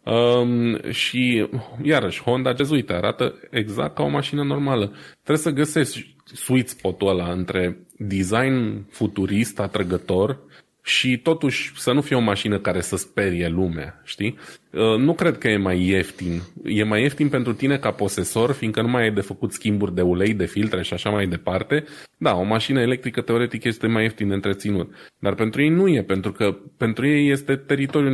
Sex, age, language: male, 20-39, Romanian